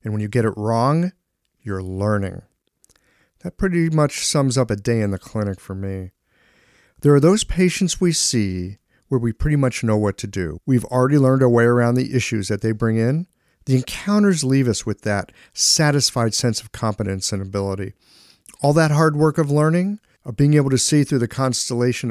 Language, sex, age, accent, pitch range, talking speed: English, male, 50-69, American, 105-140 Hz, 195 wpm